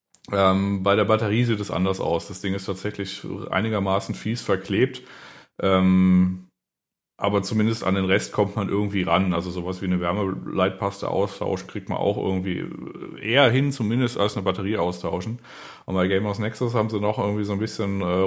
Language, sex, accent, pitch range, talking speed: German, male, German, 95-110 Hz, 180 wpm